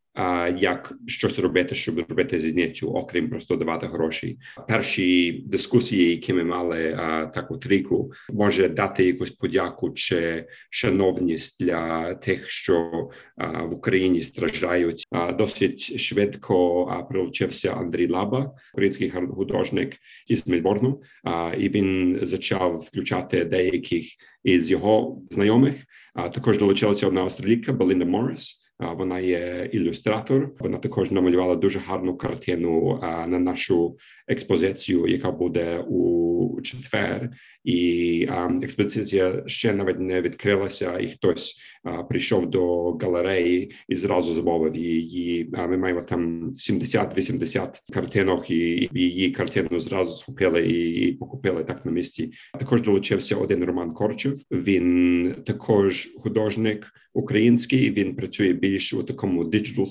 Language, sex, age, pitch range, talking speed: Ukrainian, male, 40-59, 85-105 Hz, 115 wpm